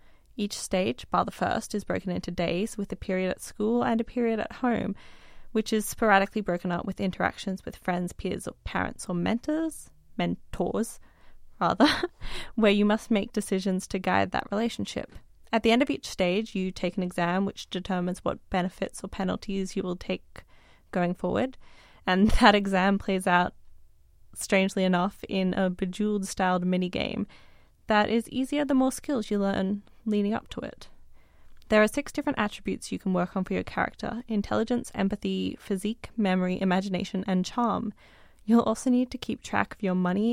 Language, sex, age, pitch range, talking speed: English, female, 20-39, 185-225 Hz, 175 wpm